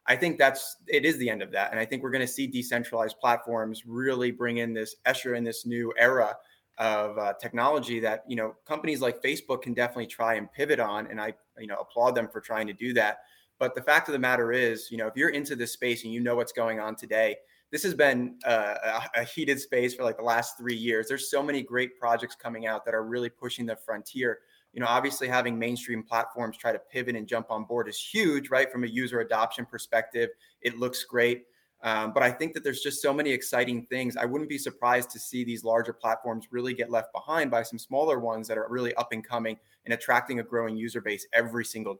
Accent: American